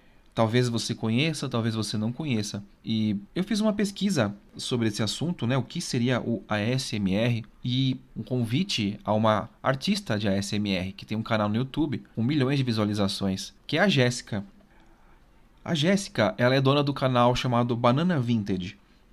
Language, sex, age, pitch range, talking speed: Portuguese, male, 30-49, 110-155 Hz, 165 wpm